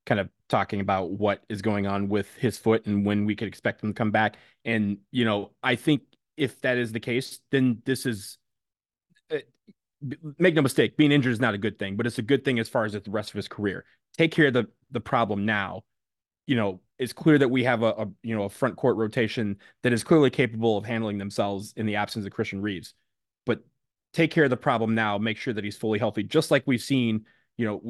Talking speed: 240 wpm